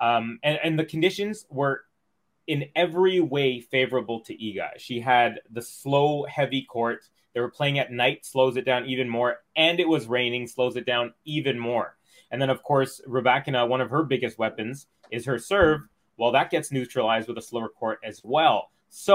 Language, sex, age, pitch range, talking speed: English, male, 30-49, 120-145 Hz, 190 wpm